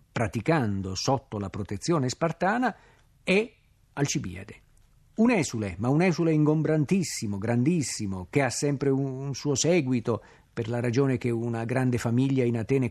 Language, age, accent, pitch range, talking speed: Italian, 50-69, native, 115-160 Hz, 135 wpm